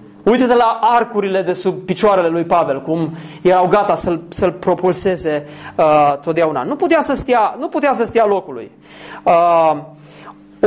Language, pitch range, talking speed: Romanian, 160-245 Hz, 145 wpm